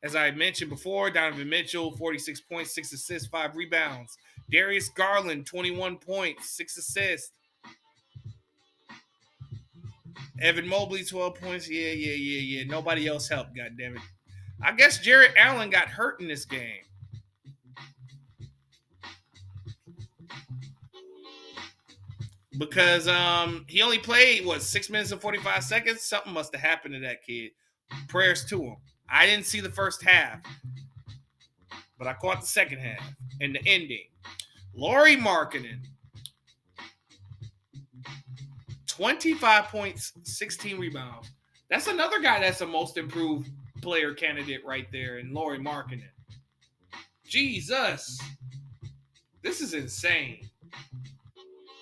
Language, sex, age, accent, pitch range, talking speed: English, male, 20-39, American, 120-170 Hz, 115 wpm